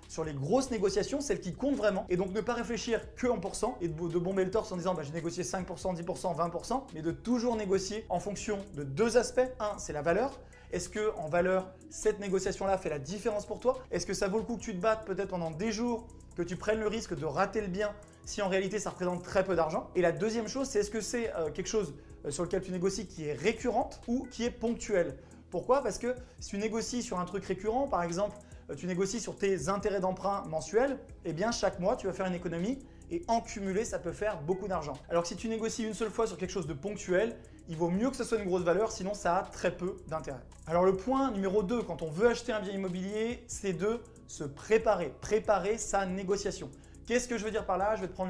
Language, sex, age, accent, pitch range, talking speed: French, male, 20-39, French, 180-225 Hz, 250 wpm